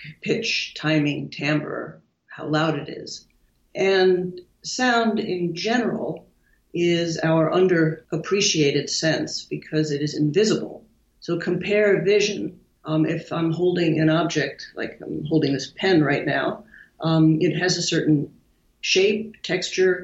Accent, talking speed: American, 130 wpm